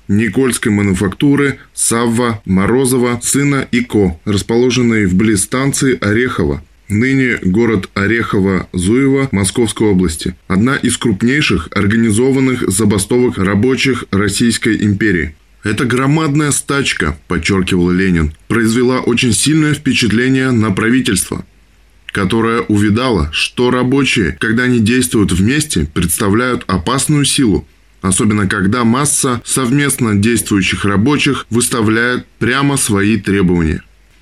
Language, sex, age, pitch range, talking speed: Russian, male, 20-39, 100-125 Hz, 90 wpm